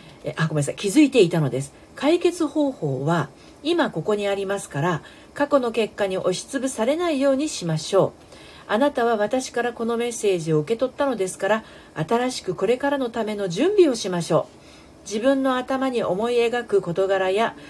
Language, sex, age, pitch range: Japanese, female, 40-59, 185-275 Hz